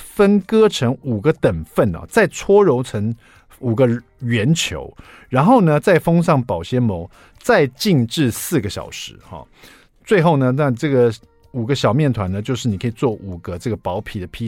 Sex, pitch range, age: male, 110-155 Hz, 50-69